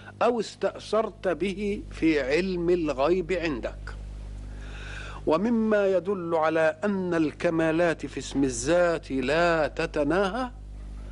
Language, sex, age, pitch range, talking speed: Arabic, male, 50-69, 135-195 Hz, 90 wpm